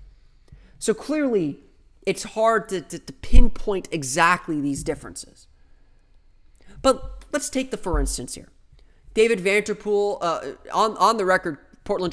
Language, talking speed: English, 130 wpm